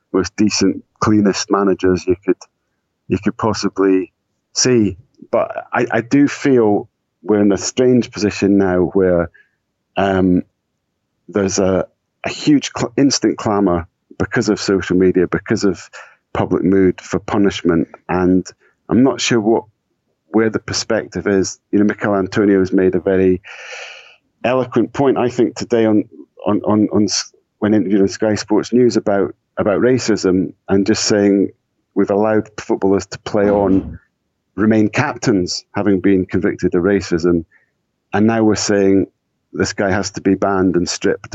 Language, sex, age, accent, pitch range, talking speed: English, male, 40-59, British, 95-105 Hz, 150 wpm